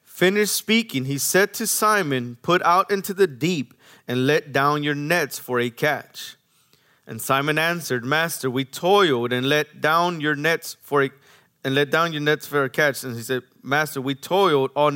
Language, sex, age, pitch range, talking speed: English, male, 30-49, 125-155 Hz, 190 wpm